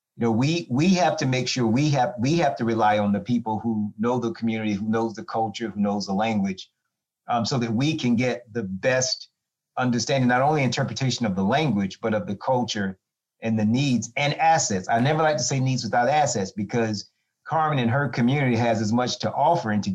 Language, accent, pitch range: English, American, 105-130 Hz